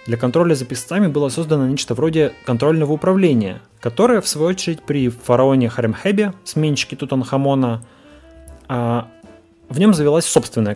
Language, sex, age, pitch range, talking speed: Russian, male, 20-39, 120-155 Hz, 130 wpm